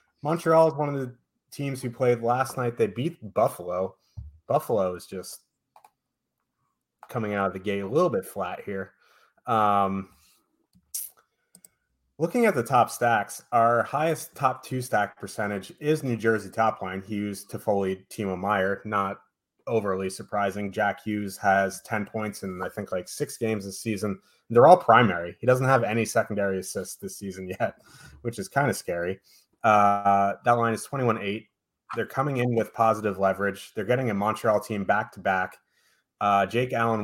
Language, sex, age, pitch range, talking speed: English, male, 30-49, 100-120 Hz, 170 wpm